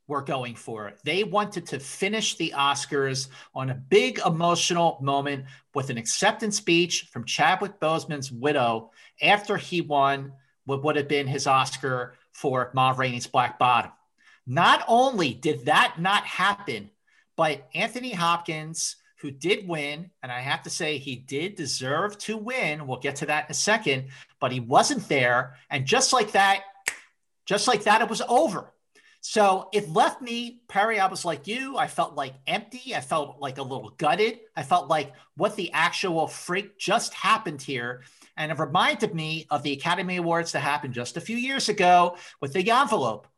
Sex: male